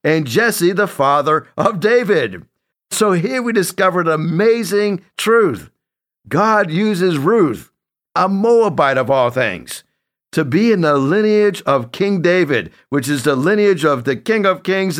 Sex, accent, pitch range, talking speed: male, American, 135-190 Hz, 150 wpm